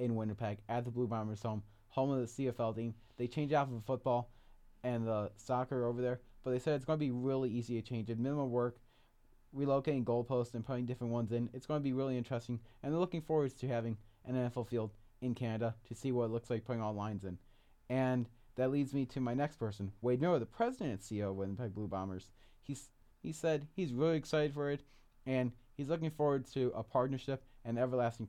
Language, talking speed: English, 225 wpm